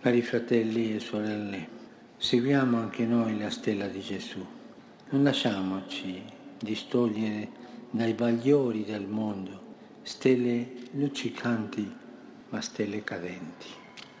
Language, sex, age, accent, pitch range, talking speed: Italian, male, 60-79, native, 110-140 Hz, 95 wpm